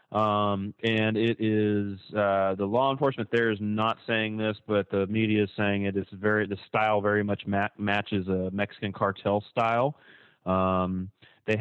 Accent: American